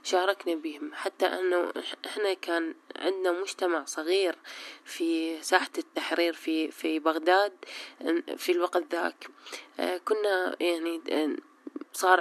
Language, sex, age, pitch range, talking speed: Arabic, female, 20-39, 170-215 Hz, 105 wpm